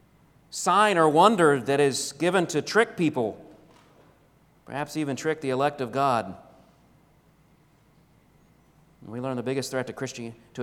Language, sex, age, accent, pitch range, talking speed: English, male, 40-59, American, 130-170 Hz, 130 wpm